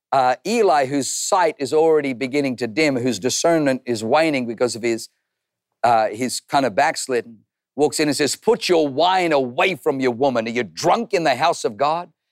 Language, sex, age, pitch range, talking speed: English, male, 50-69, 125-155 Hz, 190 wpm